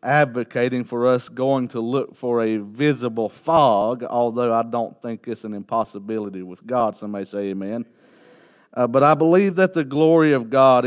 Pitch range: 125-170 Hz